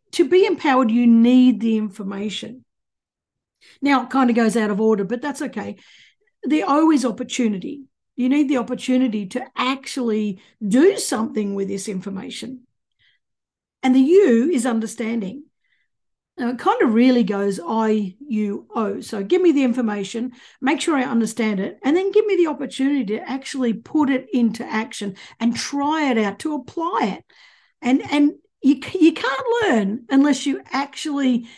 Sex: female